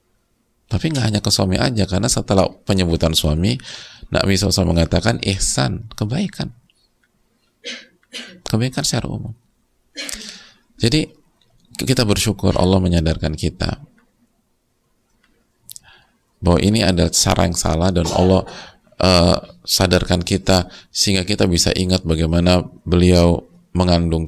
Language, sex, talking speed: English, male, 105 wpm